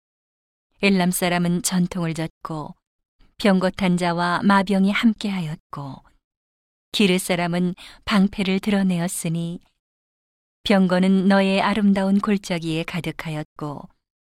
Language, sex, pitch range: Korean, female, 170-200 Hz